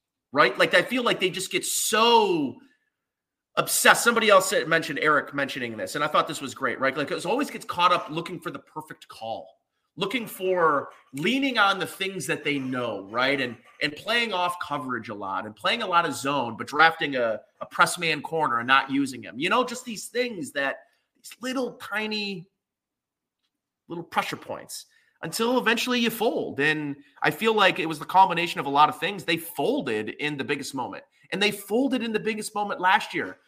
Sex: male